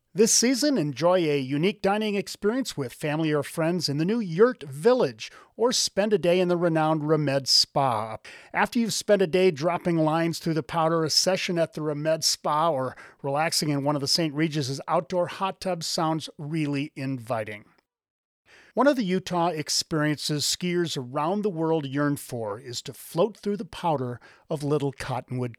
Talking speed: 175 wpm